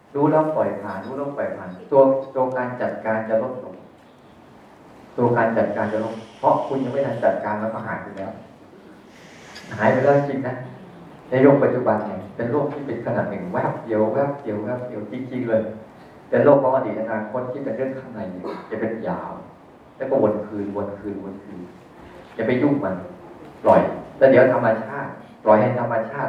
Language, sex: Thai, male